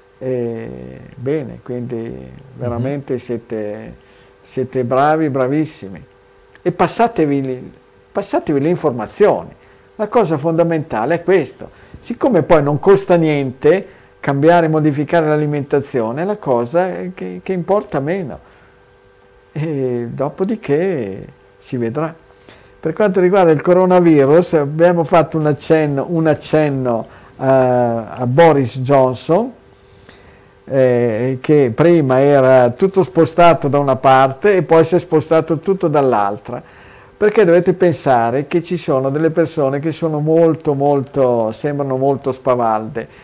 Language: Italian